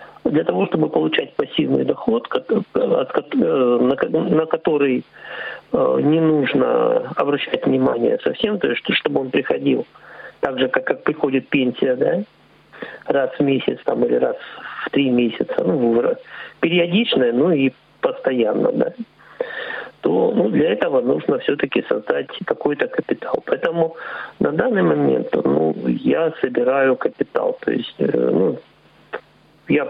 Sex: male